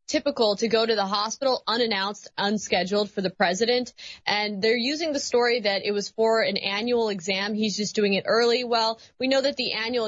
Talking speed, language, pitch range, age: 200 wpm, English, 195-230 Hz, 20-39